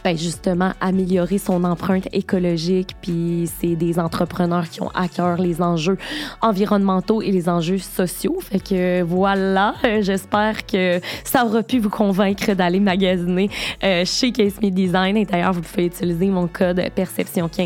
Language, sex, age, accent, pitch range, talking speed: French, female, 20-39, Canadian, 190-240 Hz, 155 wpm